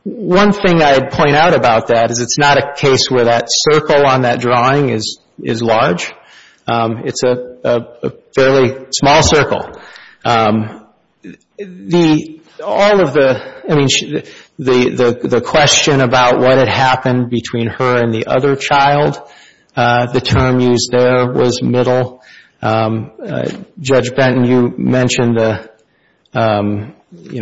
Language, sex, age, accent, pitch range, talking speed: English, male, 40-59, American, 115-130 Hz, 145 wpm